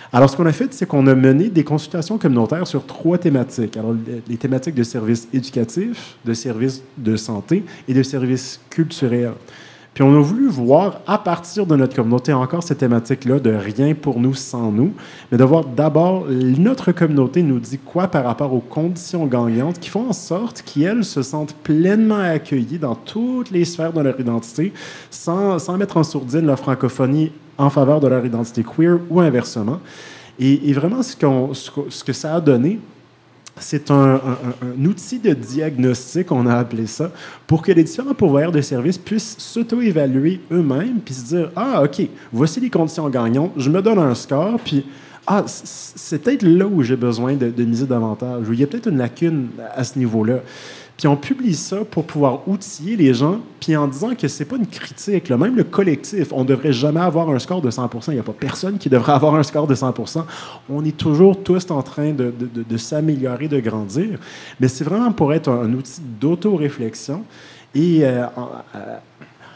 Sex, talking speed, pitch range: male, 205 wpm, 130-170 Hz